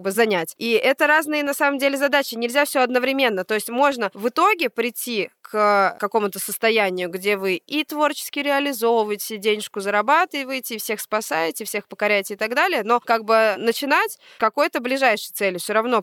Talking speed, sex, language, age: 165 wpm, female, Russian, 20-39